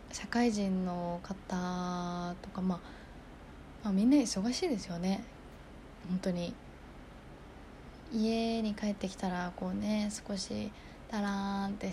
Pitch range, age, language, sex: 185-220 Hz, 20-39, Japanese, female